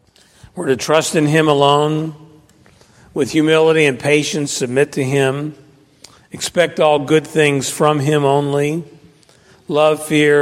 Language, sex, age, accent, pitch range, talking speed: English, male, 50-69, American, 130-170 Hz, 125 wpm